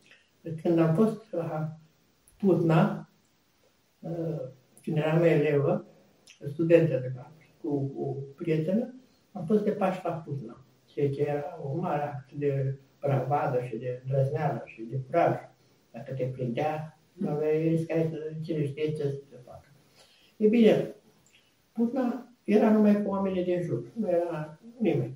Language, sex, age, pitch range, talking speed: Romanian, male, 60-79, 145-200 Hz, 135 wpm